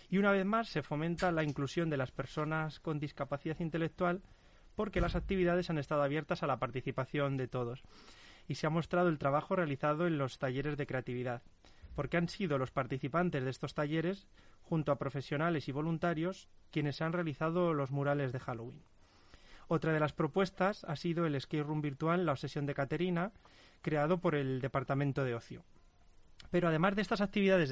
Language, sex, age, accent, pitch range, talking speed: Spanish, male, 30-49, Spanish, 140-175 Hz, 175 wpm